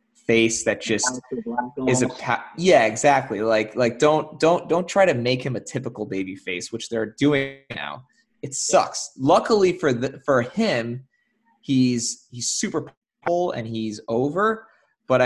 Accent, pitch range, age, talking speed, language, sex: American, 115-175 Hz, 20-39, 155 wpm, English, male